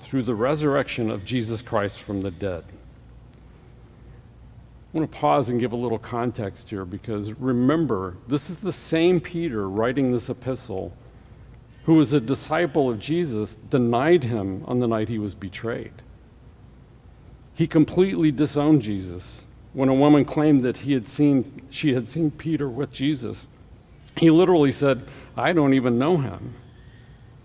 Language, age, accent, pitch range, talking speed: English, 50-69, American, 110-140 Hz, 150 wpm